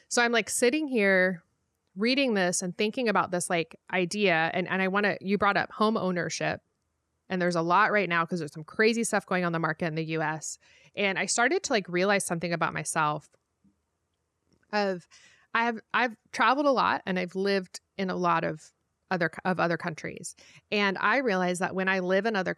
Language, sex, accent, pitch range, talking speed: English, female, American, 170-210 Hz, 205 wpm